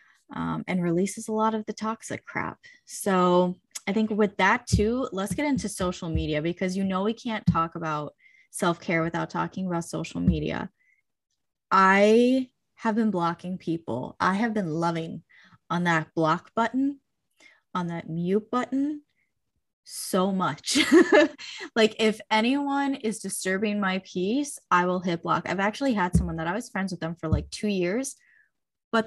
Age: 10-29